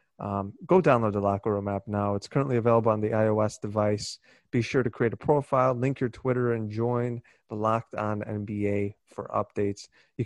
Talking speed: 195 wpm